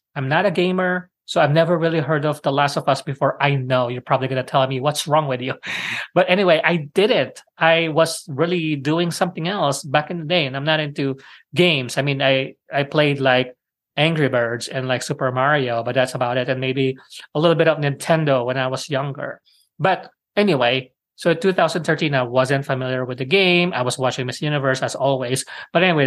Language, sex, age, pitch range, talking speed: English, male, 20-39, 135-170 Hz, 215 wpm